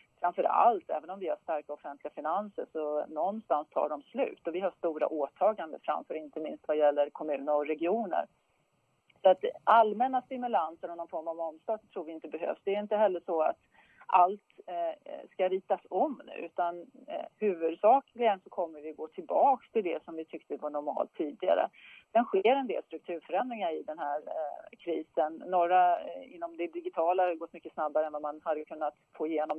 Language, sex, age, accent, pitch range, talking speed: English, female, 40-59, Swedish, 155-215 Hz, 185 wpm